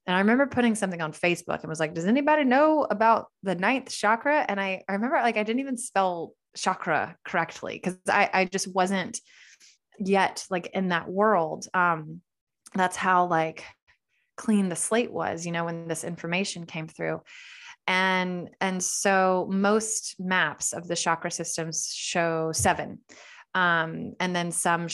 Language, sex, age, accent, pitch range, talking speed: English, female, 20-39, American, 170-195 Hz, 165 wpm